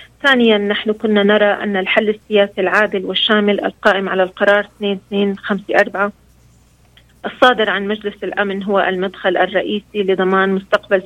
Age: 30-49